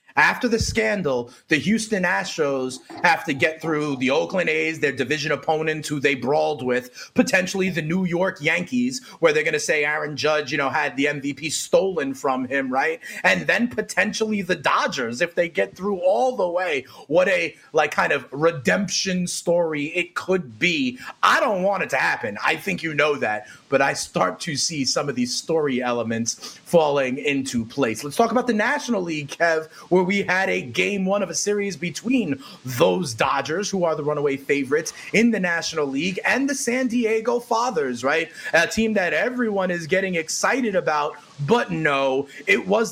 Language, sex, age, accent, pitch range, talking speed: English, male, 30-49, American, 150-210 Hz, 185 wpm